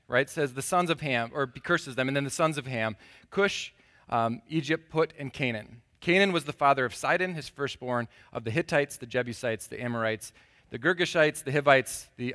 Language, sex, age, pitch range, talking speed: English, male, 30-49, 120-160 Hz, 200 wpm